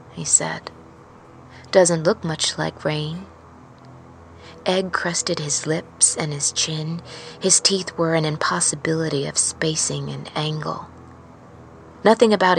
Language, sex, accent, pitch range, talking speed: English, female, American, 105-175 Hz, 120 wpm